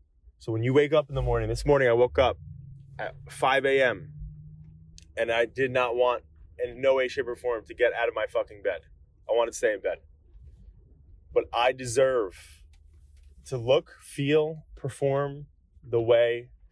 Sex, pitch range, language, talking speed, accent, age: male, 80-130 Hz, English, 175 wpm, American, 20-39